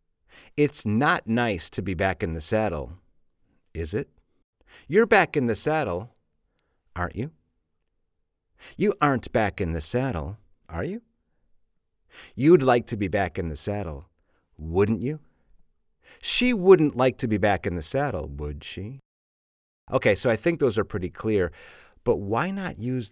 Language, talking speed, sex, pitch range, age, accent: English, 155 wpm, male, 85-130 Hz, 40-59, American